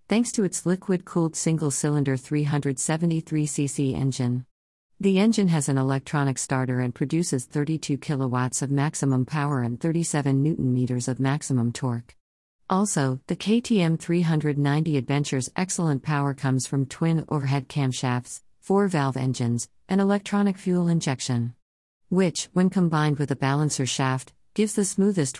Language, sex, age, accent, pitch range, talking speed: English, female, 50-69, American, 130-165 Hz, 130 wpm